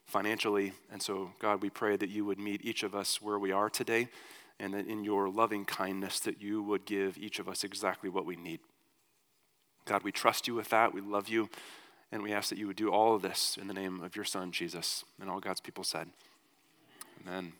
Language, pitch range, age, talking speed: English, 105-150 Hz, 30-49, 225 wpm